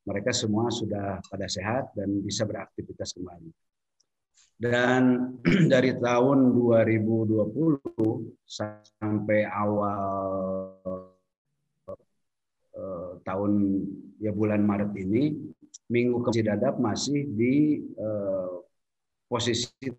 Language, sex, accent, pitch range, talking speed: Indonesian, male, native, 105-125 Hz, 80 wpm